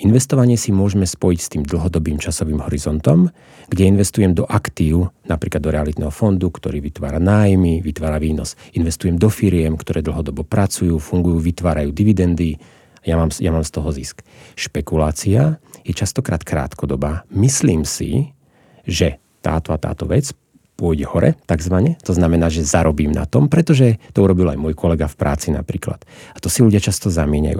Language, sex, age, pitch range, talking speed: Slovak, male, 40-59, 80-100 Hz, 160 wpm